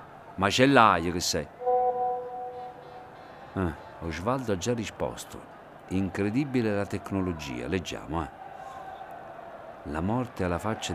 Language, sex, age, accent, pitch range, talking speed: Italian, male, 50-69, native, 95-135 Hz, 105 wpm